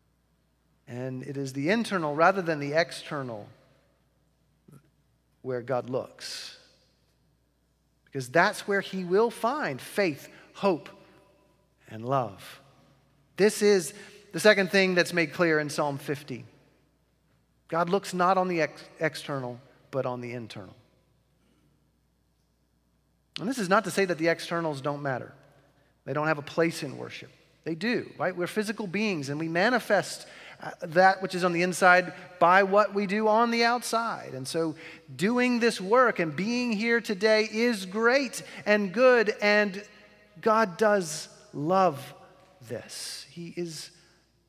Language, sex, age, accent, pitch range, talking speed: English, male, 40-59, American, 140-205 Hz, 140 wpm